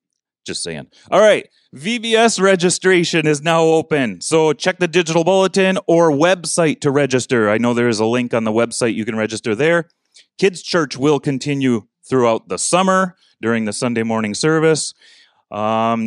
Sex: male